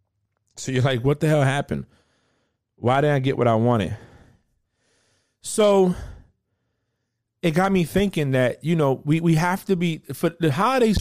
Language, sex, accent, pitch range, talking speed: English, male, American, 120-150 Hz, 165 wpm